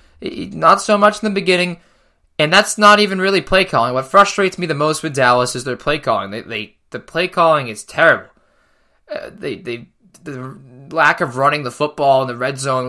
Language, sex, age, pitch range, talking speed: English, male, 20-39, 130-175 Hz, 190 wpm